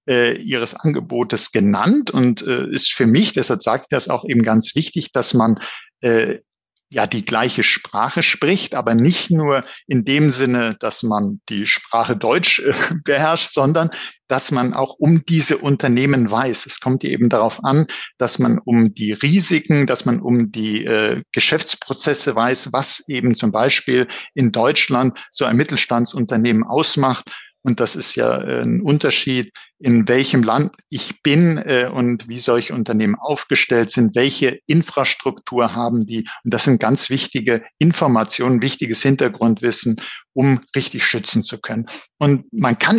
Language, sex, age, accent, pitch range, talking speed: German, male, 50-69, German, 120-155 Hz, 150 wpm